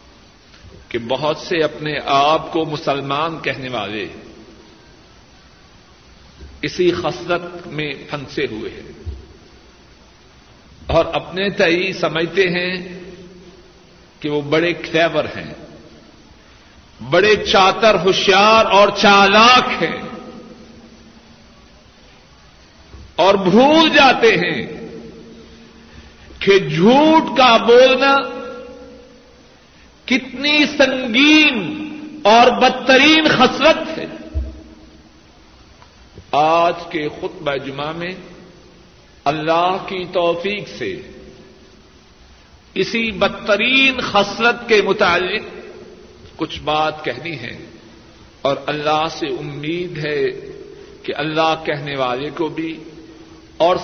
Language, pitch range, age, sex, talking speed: Urdu, 155-245 Hz, 60-79, male, 85 wpm